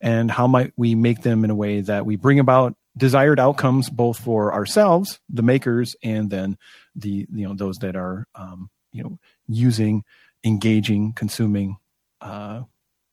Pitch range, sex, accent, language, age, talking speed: 105-135 Hz, male, American, English, 40-59, 160 wpm